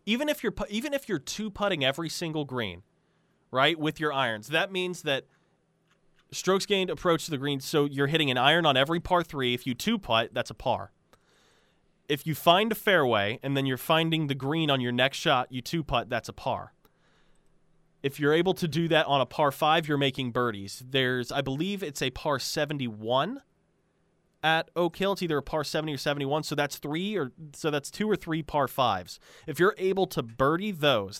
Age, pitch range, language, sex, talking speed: 20-39, 125-165 Hz, English, male, 205 wpm